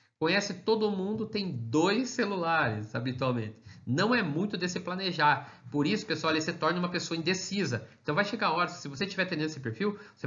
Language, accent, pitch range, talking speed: Portuguese, Brazilian, 140-205 Hz, 200 wpm